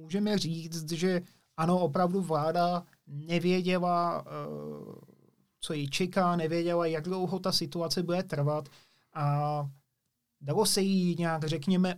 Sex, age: male, 30-49